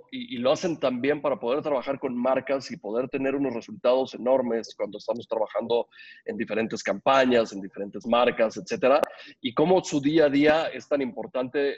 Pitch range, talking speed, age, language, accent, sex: 115-145 Hz, 175 wpm, 30-49, Spanish, Mexican, male